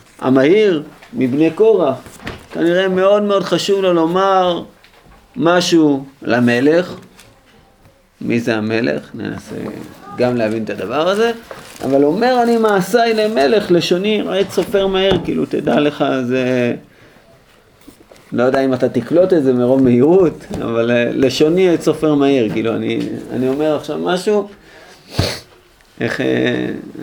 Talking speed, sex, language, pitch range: 120 wpm, male, Hebrew, 130-190 Hz